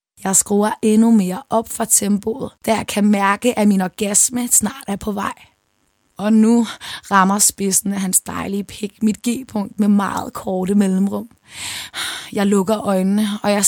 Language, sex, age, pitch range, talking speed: Danish, female, 20-39, 190-230 Hz, 160 wpm